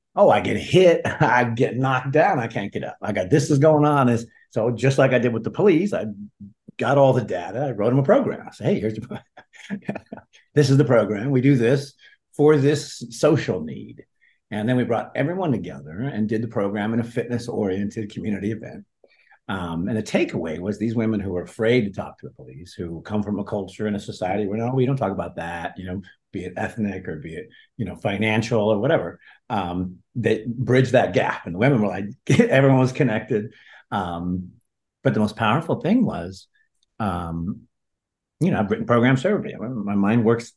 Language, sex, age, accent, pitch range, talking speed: English, male, 50-69, American, 105-135 Hz, 210 wpm